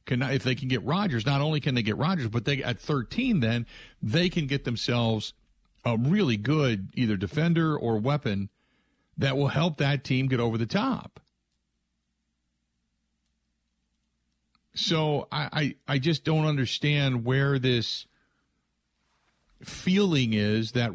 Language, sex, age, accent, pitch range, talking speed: English, male, 50-69, American, 105-145 Hz, 140 wpm